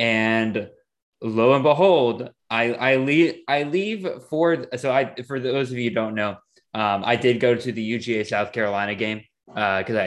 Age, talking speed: 20-39, 185 wpm